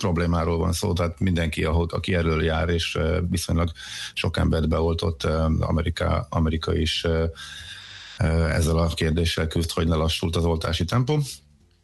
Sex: male